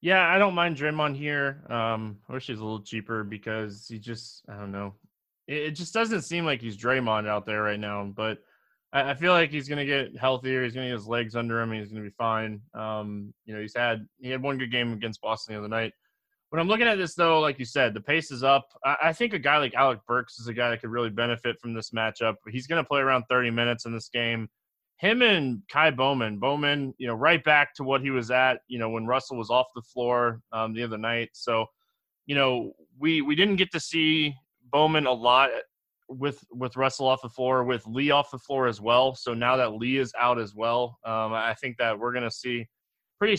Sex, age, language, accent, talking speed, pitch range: male, 20-39, English, American, 250 wpm, 115-145 Hz